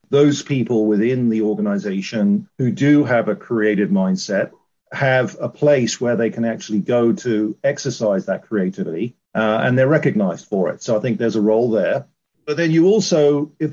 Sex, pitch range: male, 110-145 Hz